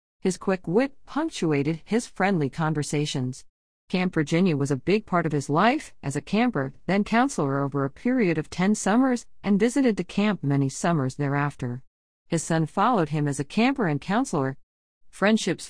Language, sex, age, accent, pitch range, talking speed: English, female, 40-59, American, 145-200 Hz, 170 wpm